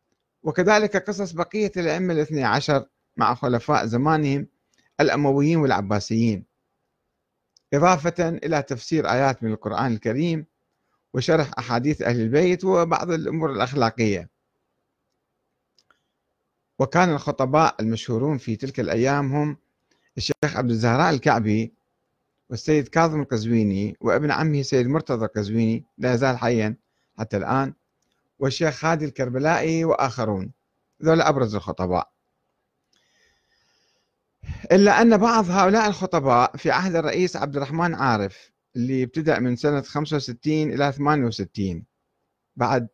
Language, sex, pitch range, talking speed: Arabic, male, 120-170 Hz, 105 wpm